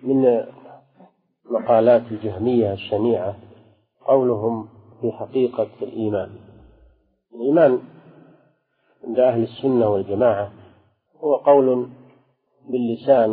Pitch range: 110-130 Hz